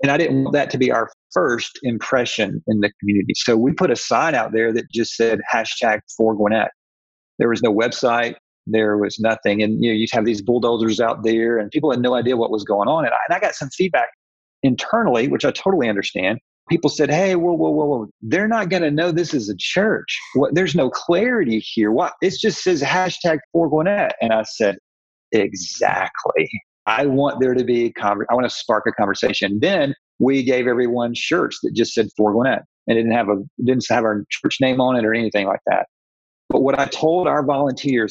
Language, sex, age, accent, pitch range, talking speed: English, male, 40-59, American, 110-145 Hz, 215 wpm